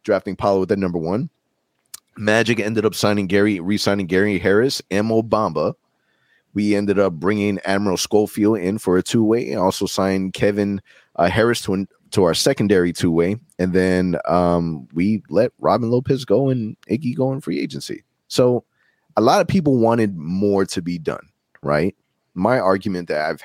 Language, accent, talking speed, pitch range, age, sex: English, American, 170 wpm, 85-105 Hz, 30-49, male